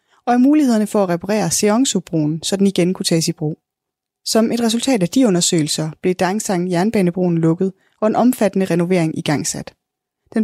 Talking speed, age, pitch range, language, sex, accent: 165 wpm, 20-39, 175-215 Hz, Danish, female, native